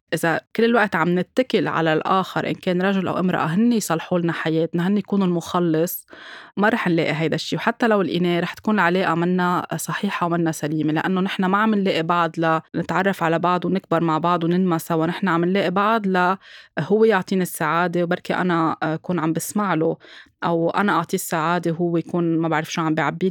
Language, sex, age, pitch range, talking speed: Arabic, female, 20-39, 165-200 Hz, 185 wpm